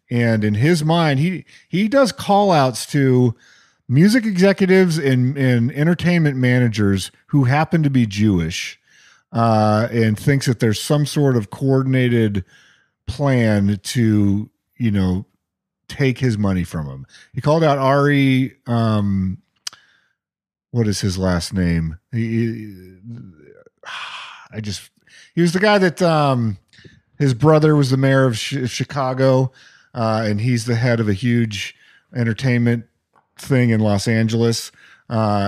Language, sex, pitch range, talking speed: English, male, 105-135 Hz, 135 wpm